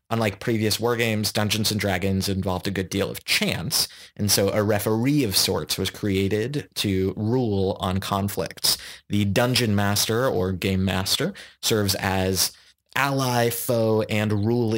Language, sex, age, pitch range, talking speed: English, male, 20-39, 95-115 Hz, 145 wpm